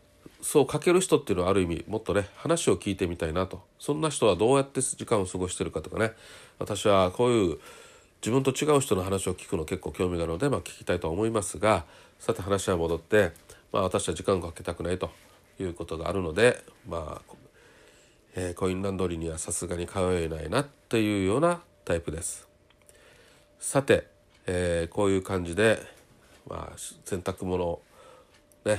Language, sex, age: Japanese, male, 40-59